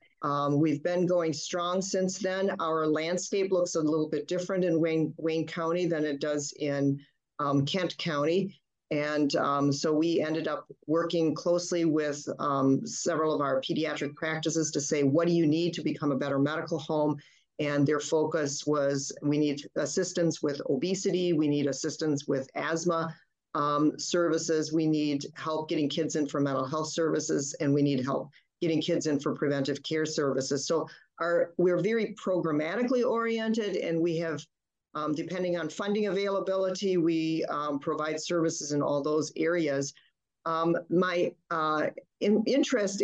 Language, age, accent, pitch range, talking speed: English, 40-59, American, 150-175 Hz, 160 wpm